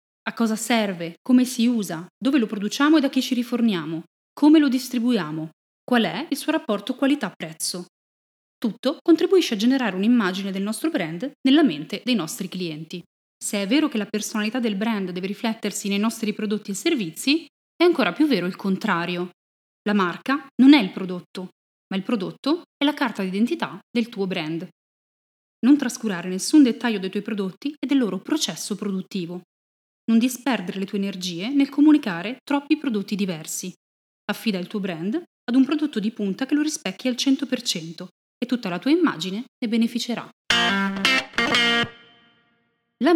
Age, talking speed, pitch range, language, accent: 30-49, 165 wpm, 190-260 Hz, Italian, native